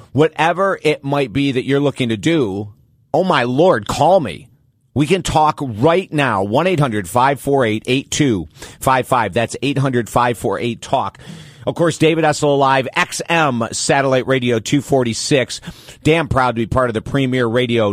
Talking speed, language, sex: 135 wpm, English, male